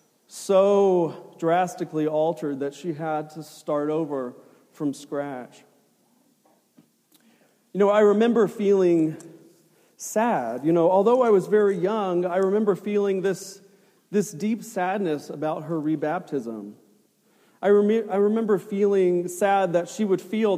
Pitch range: 160-210 Hz